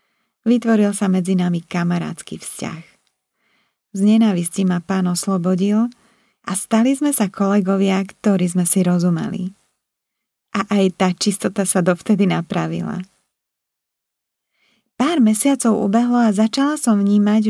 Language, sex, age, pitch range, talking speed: Slovak, female, 30-49, 190-225 Hz, 115 wpm